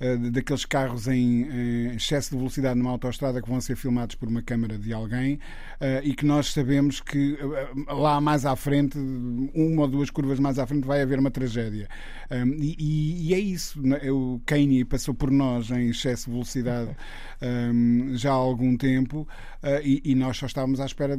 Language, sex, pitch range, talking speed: Portuguese, male, 125-160 Hz, 165 wpm